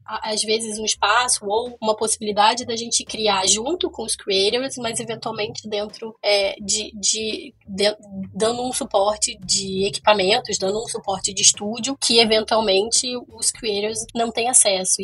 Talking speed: 150 wpm